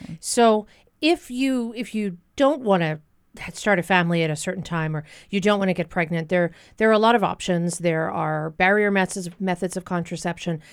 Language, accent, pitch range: English, American, 170-220 Hz